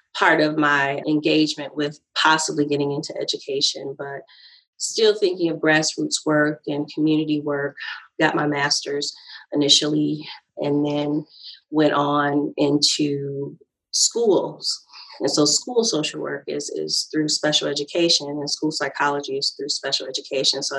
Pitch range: 145-155 Hz